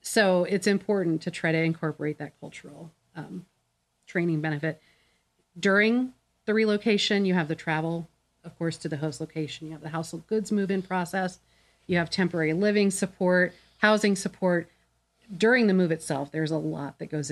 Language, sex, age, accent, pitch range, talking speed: English, female, 40-59, American, 160-185 Hz, 165 wpm